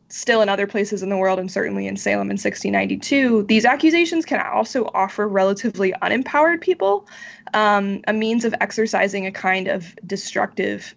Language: English